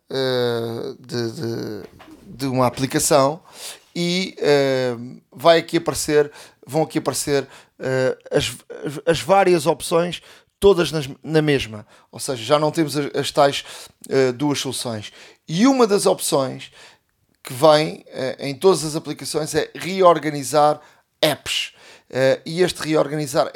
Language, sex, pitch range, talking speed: Portuguese, male, 135-165 Hz, 100 wpm